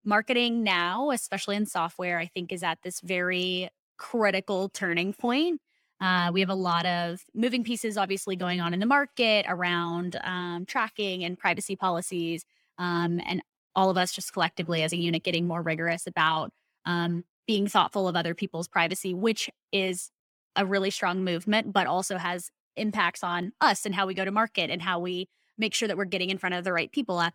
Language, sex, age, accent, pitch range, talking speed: English, female, 20-39, American, 175-205 Hz, 195 wpm